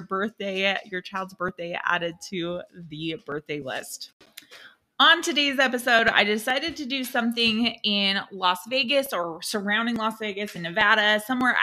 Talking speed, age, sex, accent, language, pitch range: 140 wpm, 20-39, female, American, English, 180-250 Hz